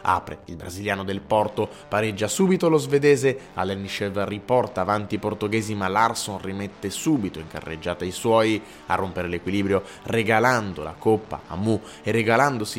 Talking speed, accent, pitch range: 150 wpm, native, 90-110 Hz